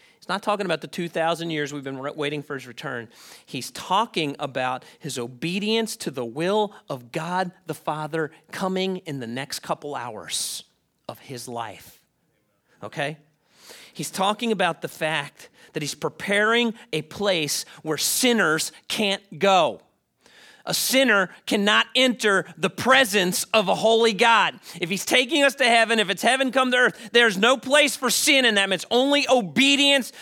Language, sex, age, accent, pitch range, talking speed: English, male, 40-59, American, 165-250 Hz, 160 wpm